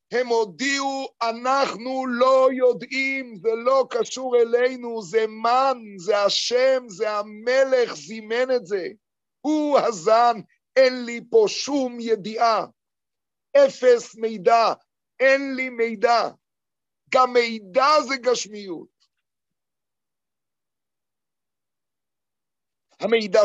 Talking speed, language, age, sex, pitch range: 90 wpm, Hebrew, 50-69, male, 205-275 Hz